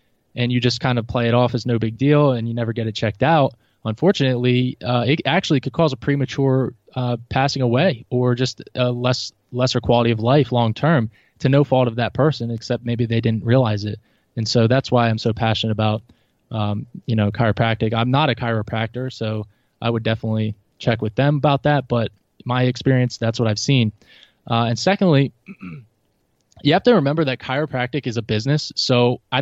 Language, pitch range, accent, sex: English, 115-140 Hz, American, male